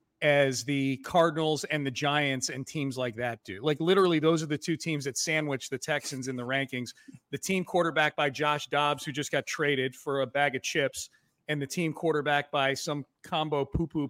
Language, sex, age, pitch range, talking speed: English, male, 40-59, 135-160 Hz, 205 wpm